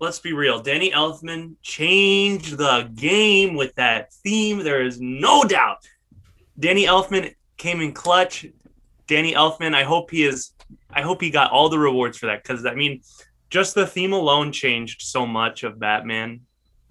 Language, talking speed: English, 165 wpm